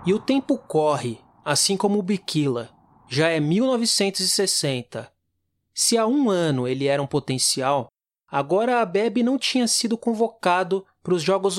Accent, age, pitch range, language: Brazilian, 20-39, 150-205 Hz, Portuguese